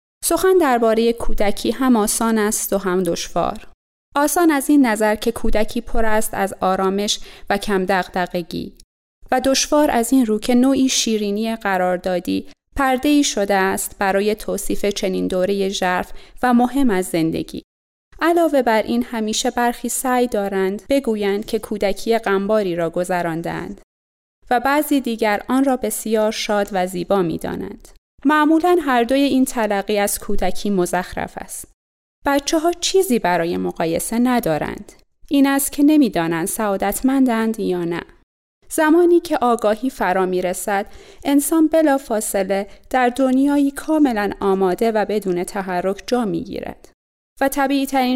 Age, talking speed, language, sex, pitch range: 30-49, 140 wpm, Persian, female, 195-270 Hz